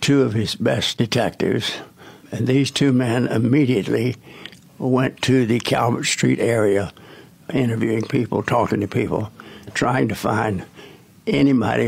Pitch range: 110-135 Hz